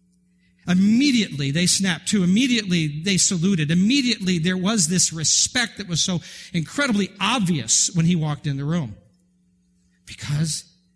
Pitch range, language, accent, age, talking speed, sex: 115-175 Hz, English, American, 50-69, 130 wpm, male